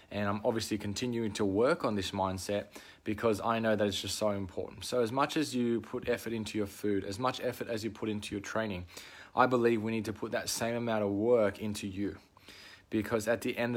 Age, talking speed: 20-39, 230 wpm